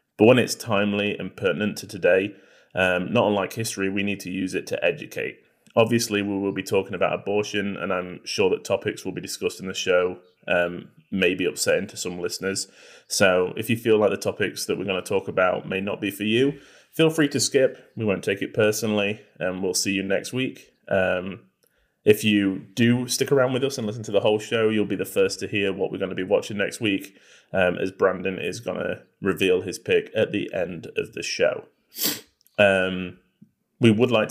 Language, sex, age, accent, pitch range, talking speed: English, male, 20-39, British, 90-125 Hz, 215 wpm